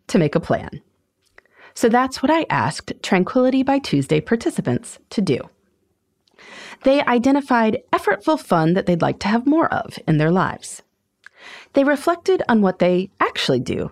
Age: 30-49